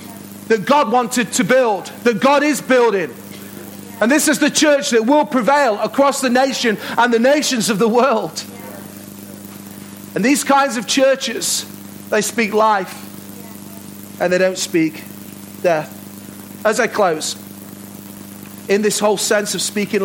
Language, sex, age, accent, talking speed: English, male, 40-59, British, 145 wpm